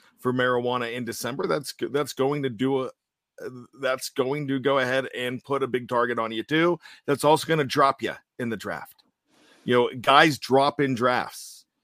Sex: male